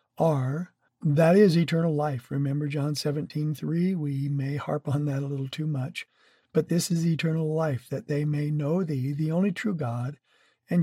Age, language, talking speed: 50-69, English, 185 wpm